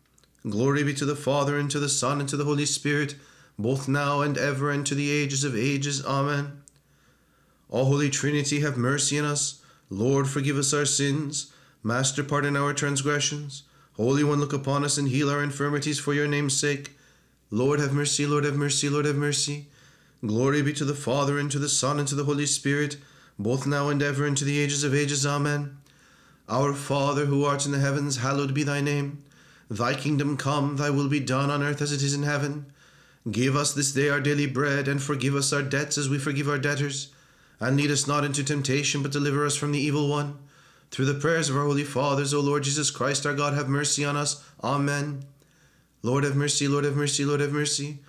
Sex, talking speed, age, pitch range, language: male, 210 wpm, 30-49, 140-145 Hz, English